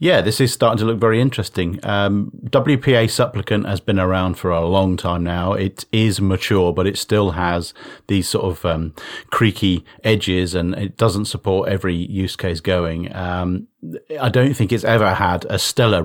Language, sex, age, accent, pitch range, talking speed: English, male, 40-59, British, 95-110 Hz, 185 wpm